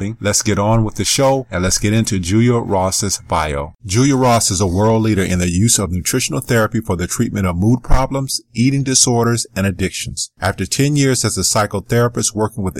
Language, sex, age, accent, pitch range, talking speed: English, male, 40-59, American, 95-120 Hz, 200 wpm